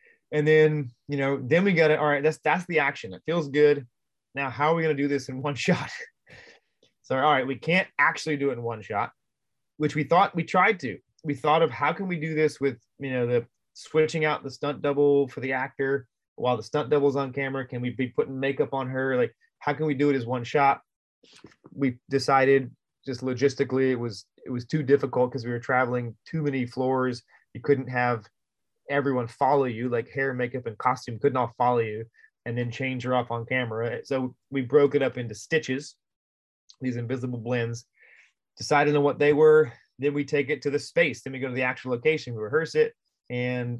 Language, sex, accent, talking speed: English, male, American, 220 wpm